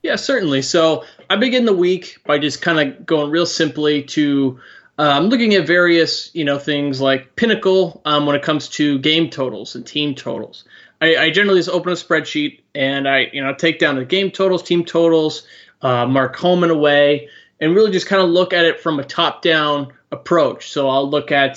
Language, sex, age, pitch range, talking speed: English, male, 20-39, 135-170 Hz, 205 wpm